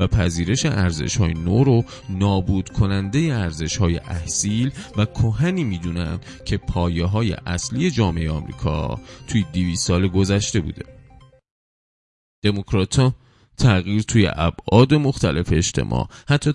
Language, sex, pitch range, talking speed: Persian, male, 85-120 Hz, 110 wpm